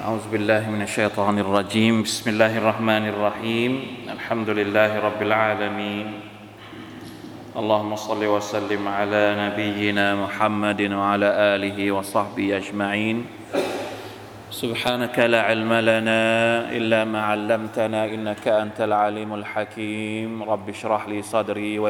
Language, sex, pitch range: Thai, male, 105-110 Hz